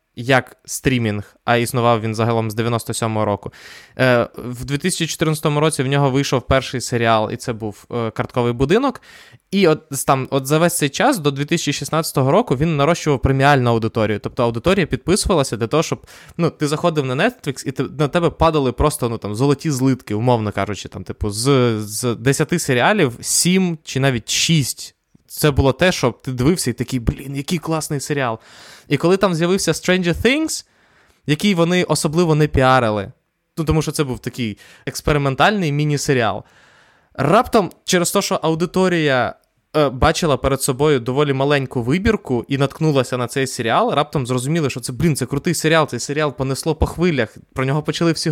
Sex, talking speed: male, 170 wpm